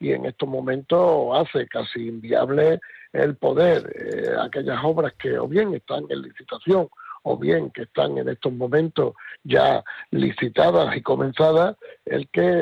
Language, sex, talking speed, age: Spanish, male, 145 wpm, 60-79